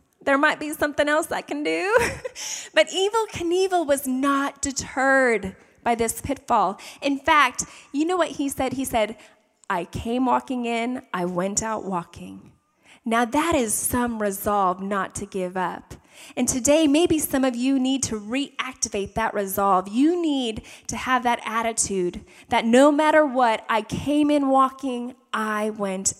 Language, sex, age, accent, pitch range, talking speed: English, female, 10-29, American, 215-295 Hz, 160 wpm